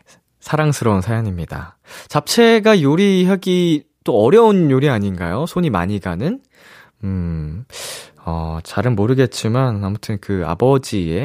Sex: male